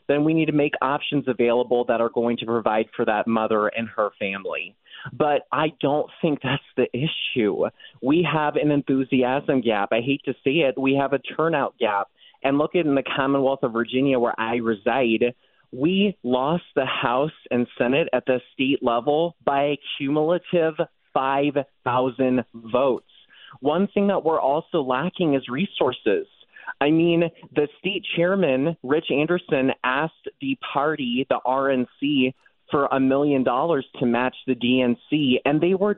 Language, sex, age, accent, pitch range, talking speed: English, male, 30-49, American, 120-155 Hz, 160 wpm